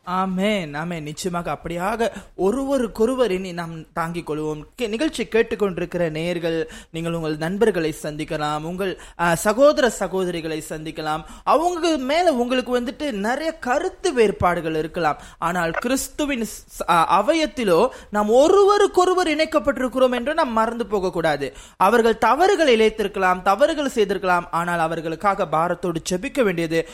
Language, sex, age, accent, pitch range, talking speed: Tamil, male, 20-39, native, 170-255 Hz, 105 wpm